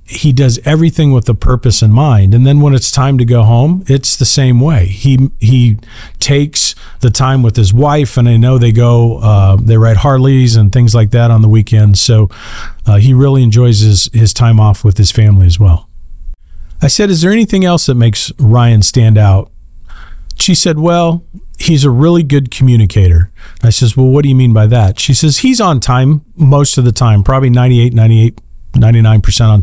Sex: male